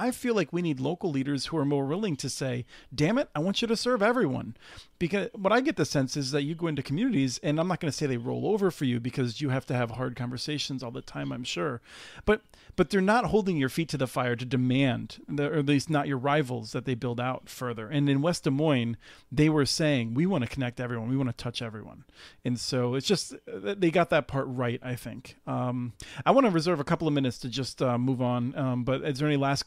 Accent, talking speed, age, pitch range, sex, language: American, 260 wpm, 40-59, 130-160 Hz, male, English